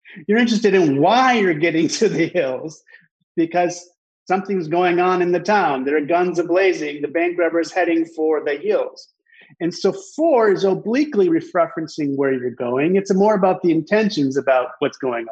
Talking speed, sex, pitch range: 175 wpm, male, 150-210 Hz